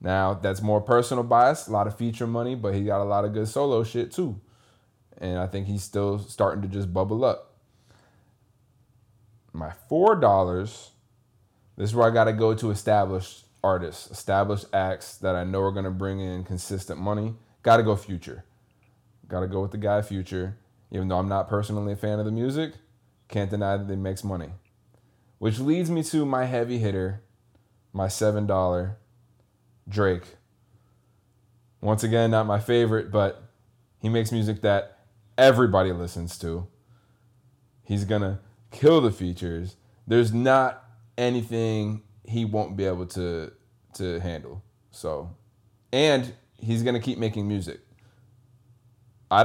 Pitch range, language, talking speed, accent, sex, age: 95-120 Hz, English, 155 wpm, American, male, 20-39